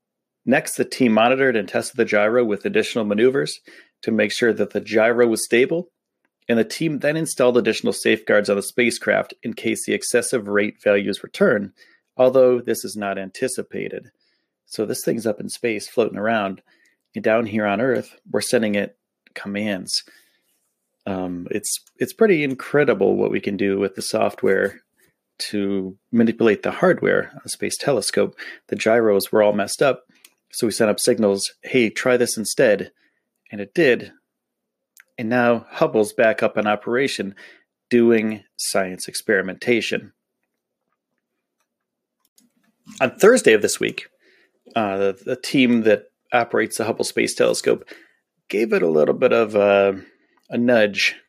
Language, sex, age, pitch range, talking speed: English, male, 30-49, 100-125 Hz, 150 wpm